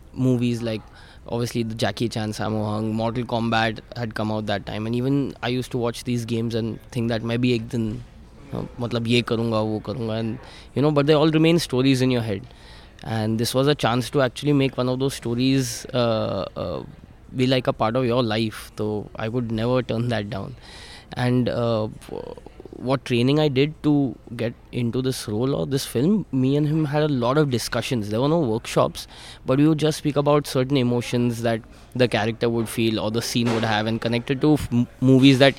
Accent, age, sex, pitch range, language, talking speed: native, 20-39, male, 110-130 Hz, Hindi, 210 wpm